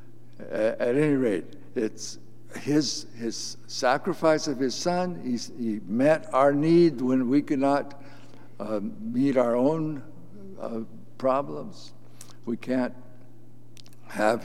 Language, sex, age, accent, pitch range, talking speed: English, male, 60-79, American, 115-135 Hz, 115 wpm